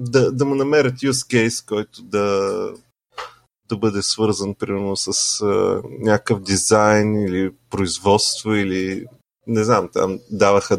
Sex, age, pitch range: male, 30-49, 100-120 Hz